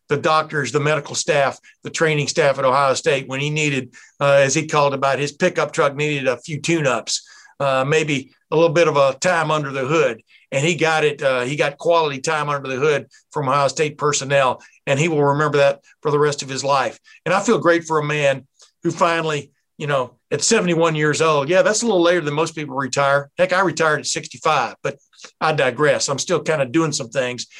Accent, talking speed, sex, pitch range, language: American, 220 wpm, male, 140-165 Hz, English